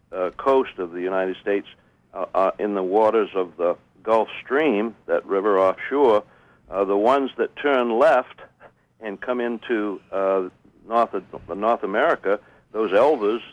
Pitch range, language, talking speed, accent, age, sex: 100-120 Hz, English, 150 wpm, American, 60-79, male